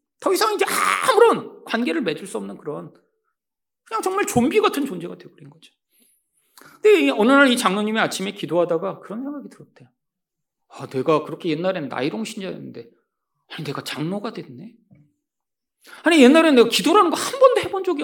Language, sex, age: Korean, male, 40-59